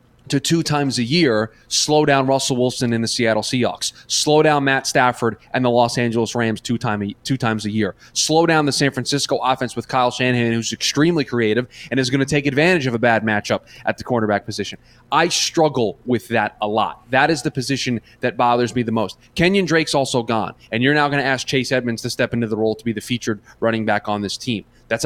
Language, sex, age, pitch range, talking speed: English, male, 20-39, 115-140 Hz, 230 wpm